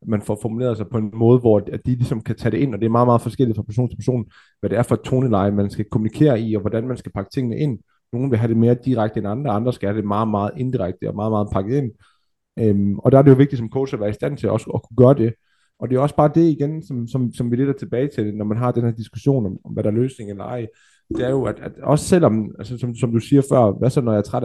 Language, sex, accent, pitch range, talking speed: Danish, male, native, 110-130 Hz, 310 wpm